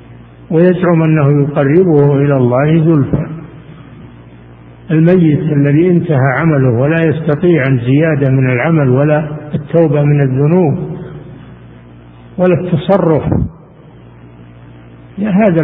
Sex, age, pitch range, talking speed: male, 50-69, 130-165 Hz, 85 wpm